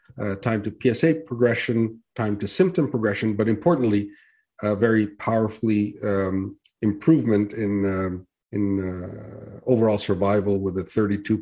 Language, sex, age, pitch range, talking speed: English, male, 50-69, 100-125 Hz, 135 wpm